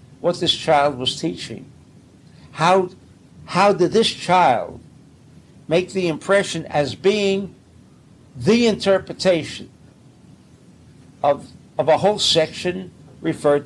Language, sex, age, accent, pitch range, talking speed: English, male, 60-79, American, 135-190 Hz, 100 wpm